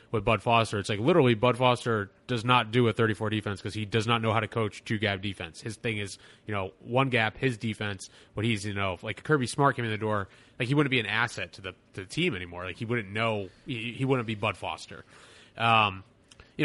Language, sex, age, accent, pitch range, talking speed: English, male, 20-39, American, 110-140 Hz, 250 wpm